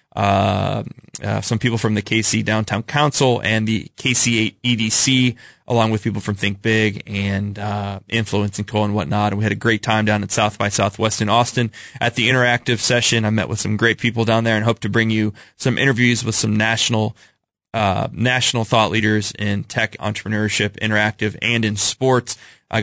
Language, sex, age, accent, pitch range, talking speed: English, male, 20-39, American, 105-120 Hz, 190 wpm